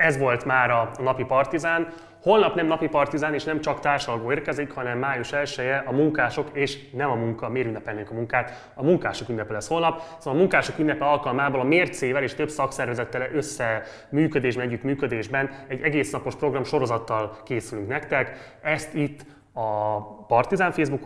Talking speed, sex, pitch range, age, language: 160 wpm, male, 115-145 Hz, 20-39, Hungarian